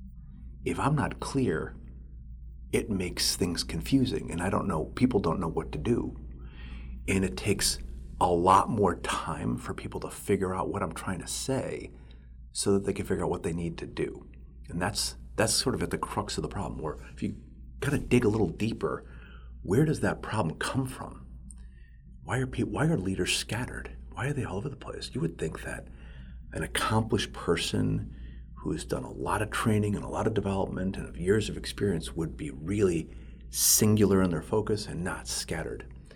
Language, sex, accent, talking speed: English, male, American, 200 wpm